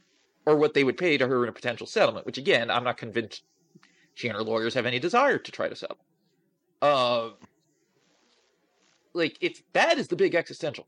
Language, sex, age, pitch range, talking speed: English, male, 30-49, 125-195 Hz, 195 wpm